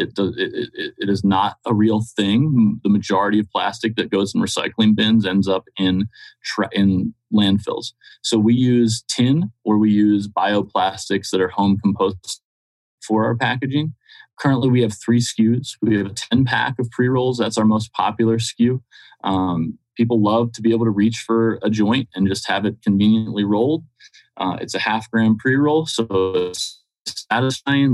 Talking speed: 170 wpm